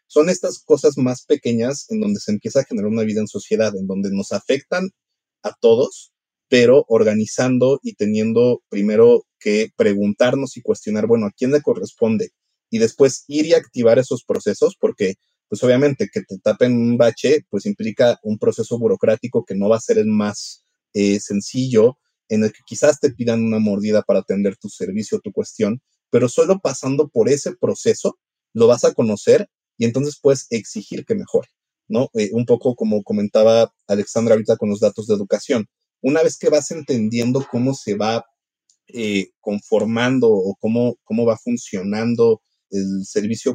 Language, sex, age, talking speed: Spanish, male, 30-49, 170 wpm